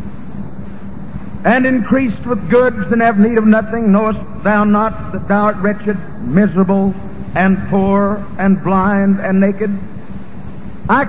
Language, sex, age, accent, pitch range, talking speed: English, male, 60-79, American, 195-230 Hz, 130 wpm